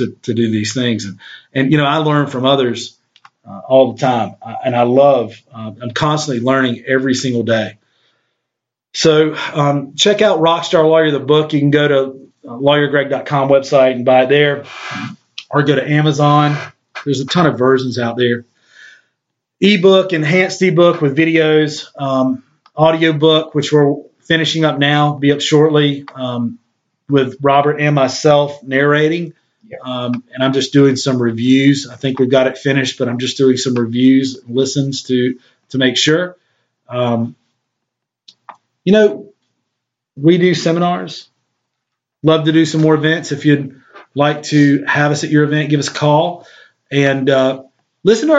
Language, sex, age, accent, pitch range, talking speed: English, male, 30-49, American, 130-155 Hz, 160 wpm